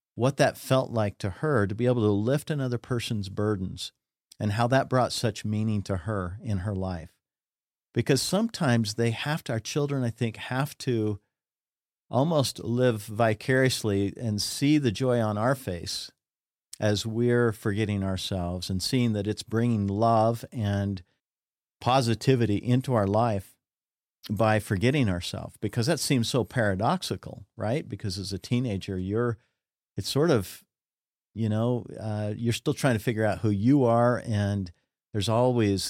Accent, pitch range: American, 100-125 Hz